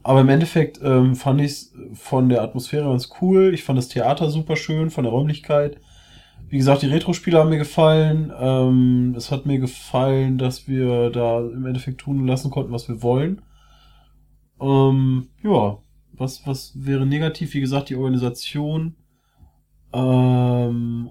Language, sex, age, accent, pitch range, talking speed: German, male, 20-39, German, 125-150 Hz, 155 wpm